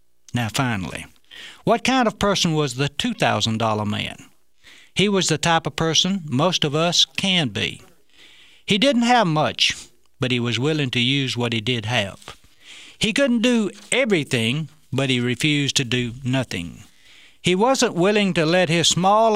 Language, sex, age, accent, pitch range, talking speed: English, male, 60-79, American, 120-180 Hz, 160 wpm